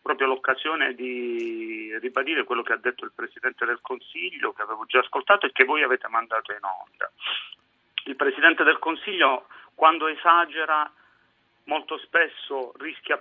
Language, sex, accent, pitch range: Italian, male, native, 150-220 Hz